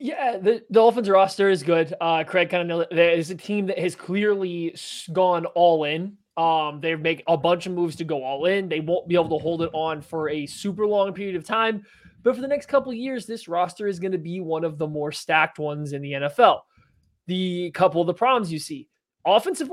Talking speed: 230 wpm